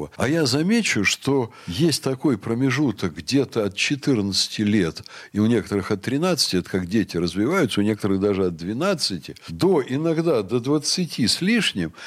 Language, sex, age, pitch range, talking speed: Russian, male, 60-79, 105-155 Hz, 155 wpm